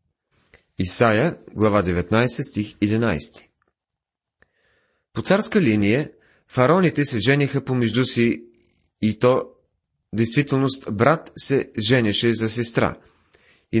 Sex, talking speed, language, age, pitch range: male, 95 wpm, Bulgarian, 30-49, 105-130 Hz